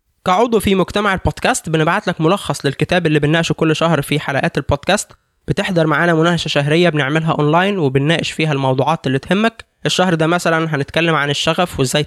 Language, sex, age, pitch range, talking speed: Arabic, male, 20-39, 150-180 Hz, 165 wpm